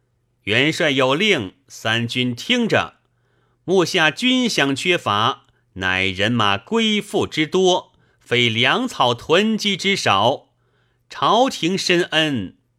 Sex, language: male, Chinese